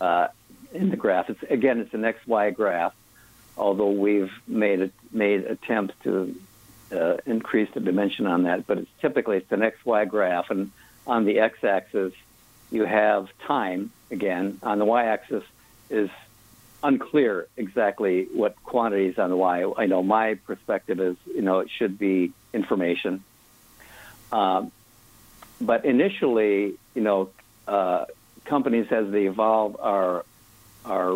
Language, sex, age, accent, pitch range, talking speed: English, male, 60-79, American, 100-115 Hz, 150 wpm